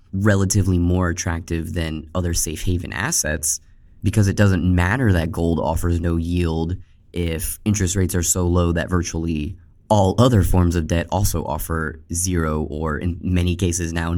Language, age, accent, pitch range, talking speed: English, 20-39, American, 85-100 Hz, 160 wpm